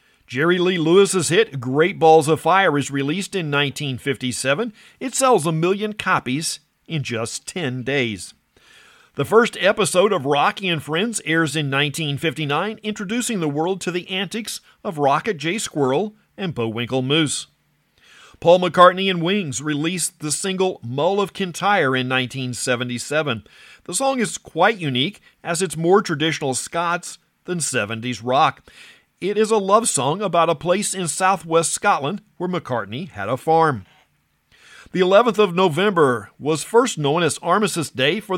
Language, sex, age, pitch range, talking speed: English, male, 40-59, 140-190 Hz, 150 wpm